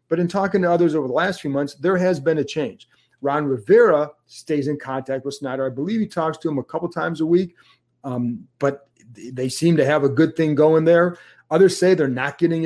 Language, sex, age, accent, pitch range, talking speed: English, male, 40-59, American, 140-175 Hz, 230 wpm